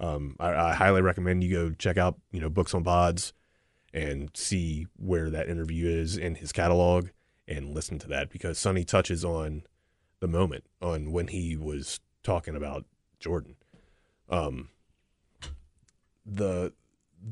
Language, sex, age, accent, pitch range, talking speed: English, male, 30-49, American, 80-95 Hz, 145 wpm